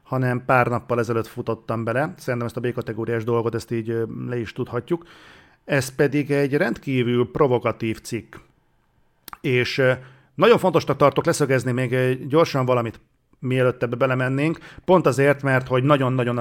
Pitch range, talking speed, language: 120-135 Hz, 135 wpm, Hungarian